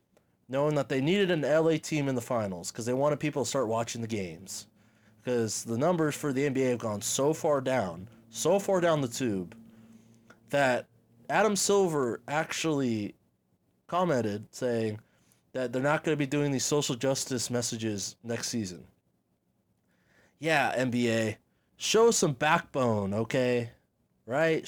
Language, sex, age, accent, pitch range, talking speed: English, male, 20-39, American, 115-160 Hz, 150 wpm